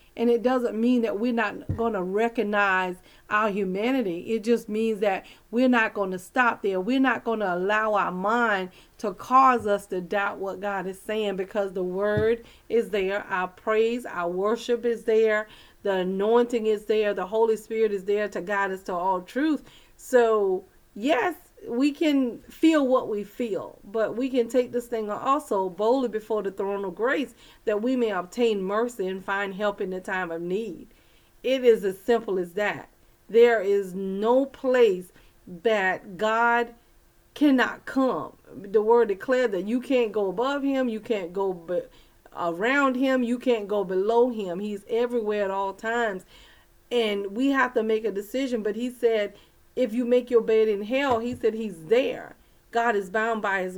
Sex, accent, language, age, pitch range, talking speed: female, American, English, 40-59, 200-245 Hz, 180 wpm